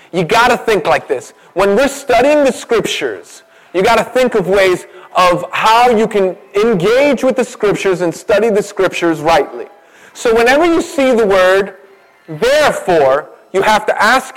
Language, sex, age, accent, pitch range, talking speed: English, male, 30-49, American, 180-250 Hz, 170 wpm